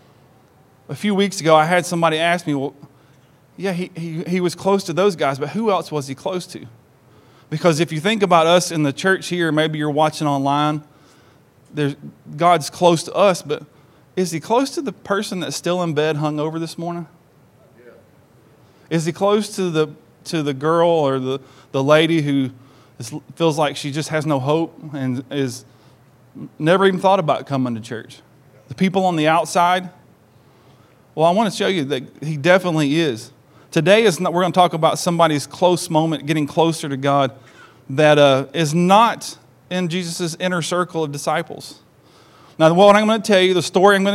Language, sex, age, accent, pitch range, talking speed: English, male, 30-49, American, 140-180 Hz, 190 wpm